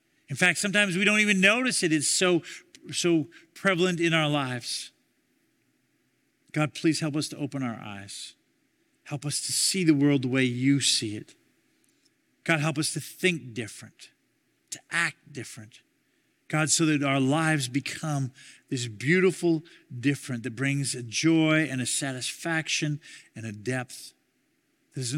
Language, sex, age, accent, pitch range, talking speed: Dutch, male, 50-69, American, 130-180 Hz, 155 wpm